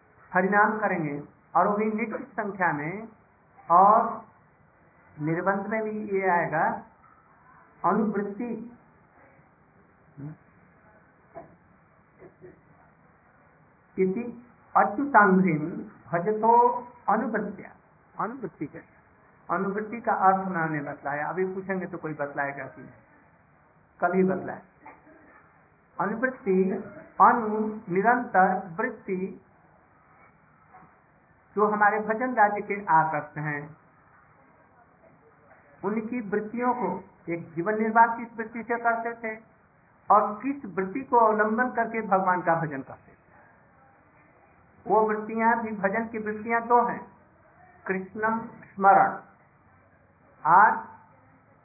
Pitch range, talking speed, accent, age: 175-225 Hz, 95 wpm, native, 60-79